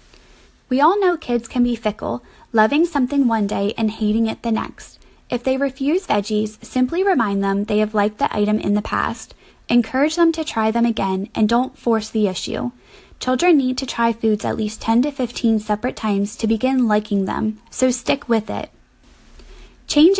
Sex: female